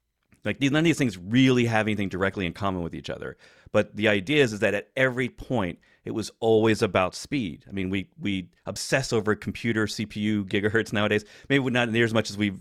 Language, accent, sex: English, American, male